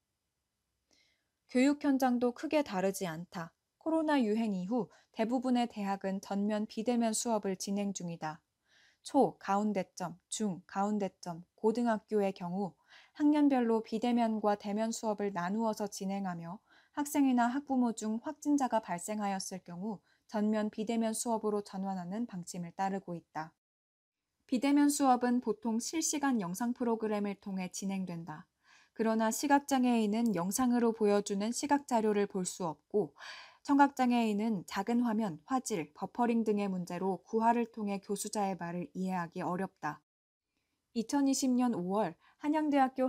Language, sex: Korean, female